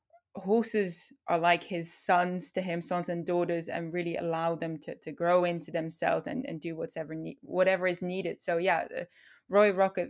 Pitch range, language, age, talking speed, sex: 175-230 Hz, English, 20-39, 170 wpm, female